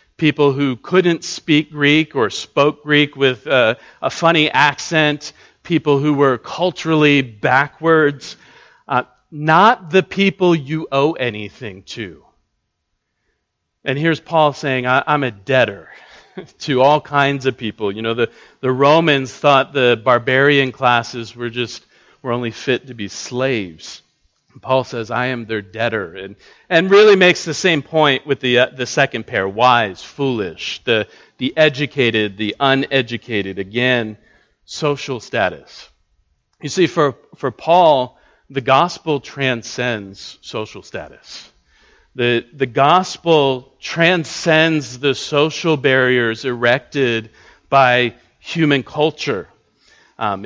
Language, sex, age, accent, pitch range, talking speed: English, male, 40-59, American, 125-155 Hz, 125 wpm